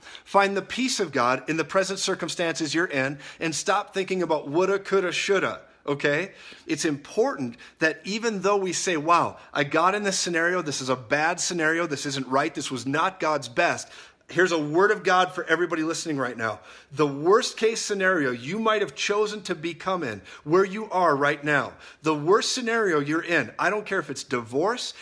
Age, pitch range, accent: 40-59, 150-200 Hz, American